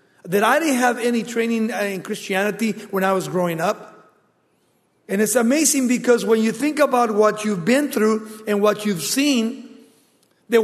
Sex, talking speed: male, 170 wpm